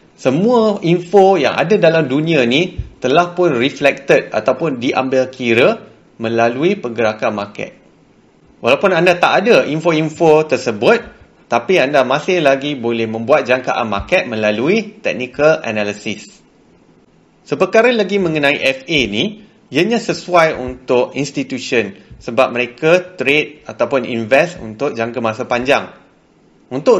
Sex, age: male, 30-49